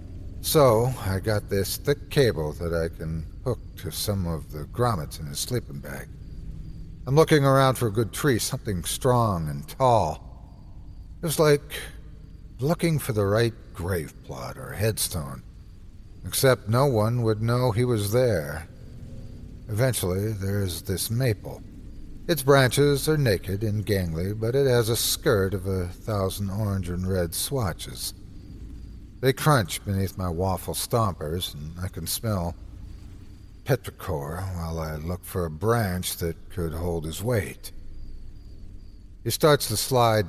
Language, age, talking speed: English, 60-79, 145 wpm